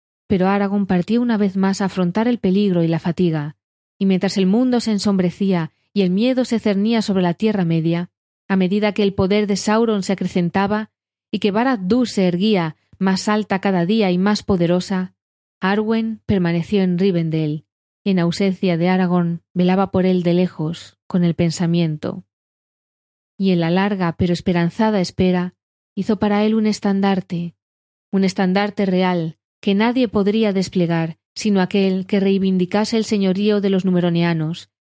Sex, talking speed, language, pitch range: female, 165 wpm, Spanish, 170-205 Hz